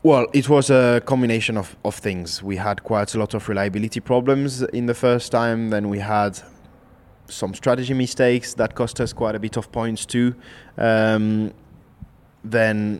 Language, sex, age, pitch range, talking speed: English, male, 20-39, 100-115 Hz, 170 wpm